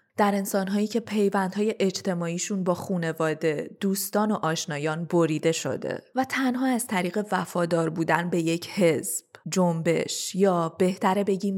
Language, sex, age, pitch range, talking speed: Persian, female, 20-39, 165-220 Hz, 130 wpm